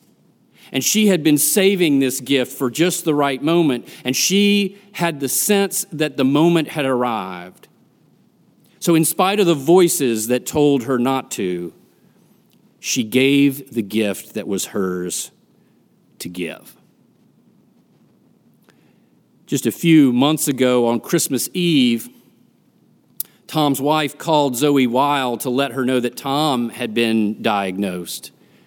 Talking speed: 135 wpm